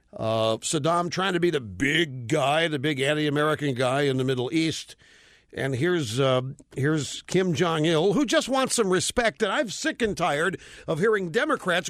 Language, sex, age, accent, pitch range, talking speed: English, male, 50-69, American, 145-220 Hz, 175 wpm